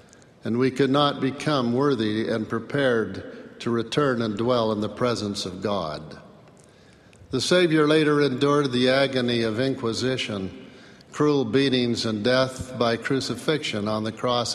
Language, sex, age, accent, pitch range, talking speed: English, male, 50-69, American, 110-135 Hz, 140 wpm